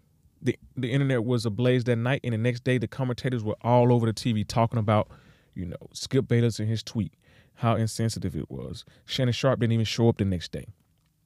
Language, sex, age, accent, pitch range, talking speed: English, male, 30-49, American, 105-140 Hz, 215 wpm